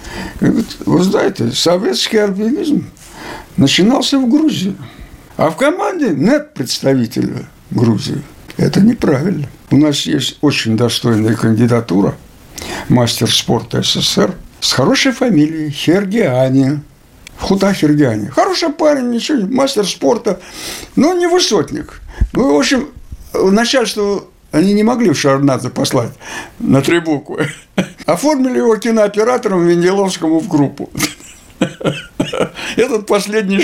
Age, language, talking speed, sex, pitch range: 60-79, Russian, 110 wpm, male, 140-235 Hz